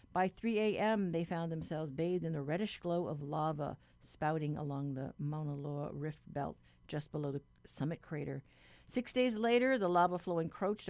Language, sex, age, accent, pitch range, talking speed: English, female, 50-69, American, 145-180 Hz, 175 wpm